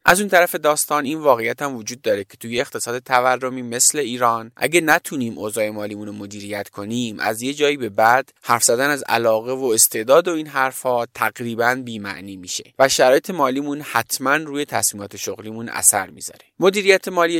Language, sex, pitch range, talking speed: Persian, male, 110-150 Hz, 170 wpm